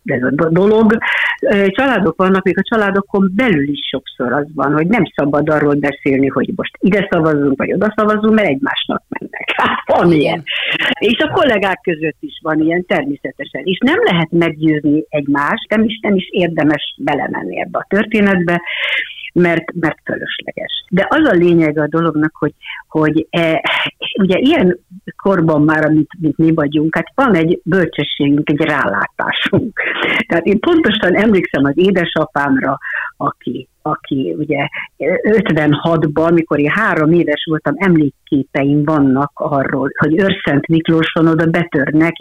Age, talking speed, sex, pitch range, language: 50-69, 140 wpm, female, 150-195 Hz, Hungarian